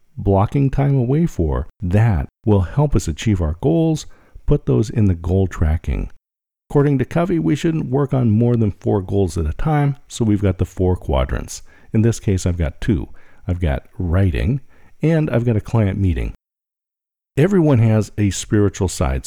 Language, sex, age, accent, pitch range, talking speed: English, male, 50-69, American, 90-130 Hz, 180 wpm